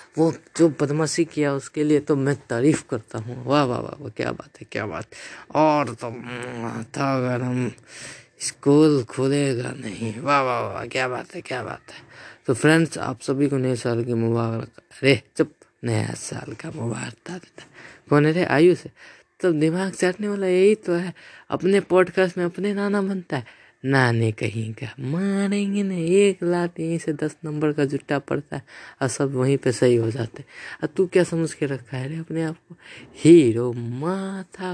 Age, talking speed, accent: 20-39, 190 wpm, native